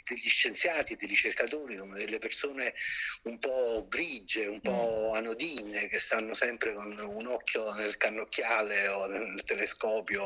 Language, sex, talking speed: Italian, male, 135 wpm